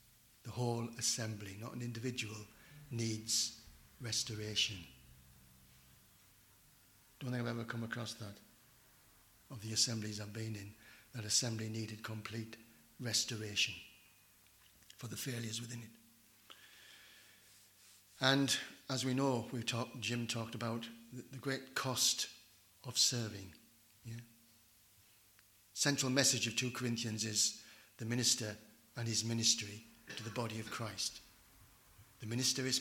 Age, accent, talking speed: 60-79, British, 120 wpm